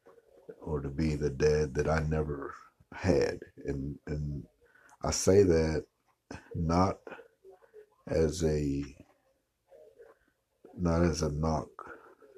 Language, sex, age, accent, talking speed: English, male, 60-79, American, 100 wpm